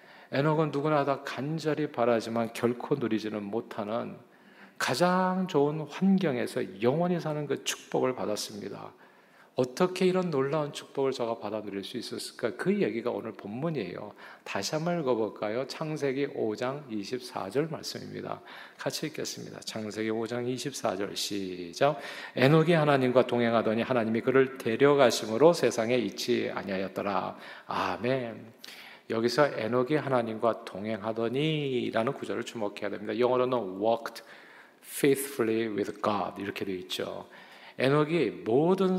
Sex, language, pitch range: male, Korean, 115-150 Hz